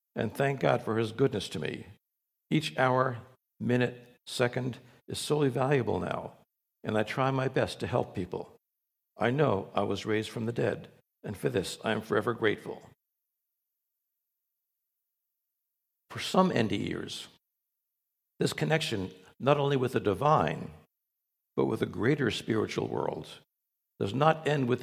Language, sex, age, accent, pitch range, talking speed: English, male, 60-79, American, 115-140 Hz, 145 wpm